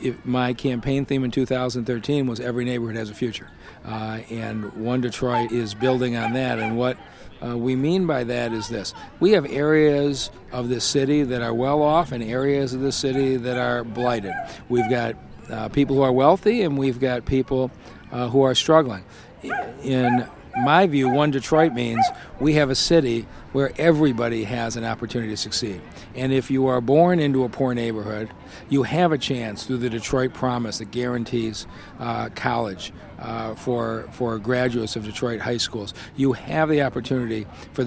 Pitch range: 115-140 Hz